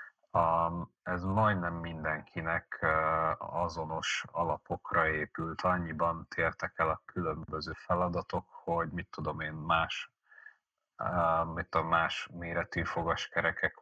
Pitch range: 80-90 Hz